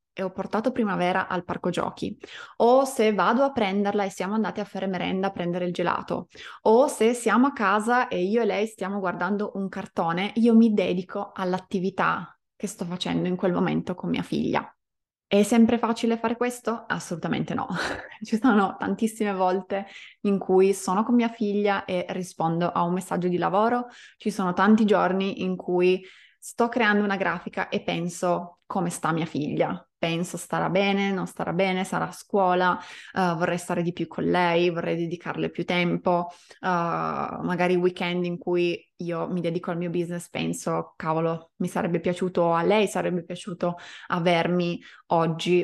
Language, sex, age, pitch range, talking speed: Italian, female, 20-39, 175-210 Hz, 170 wpm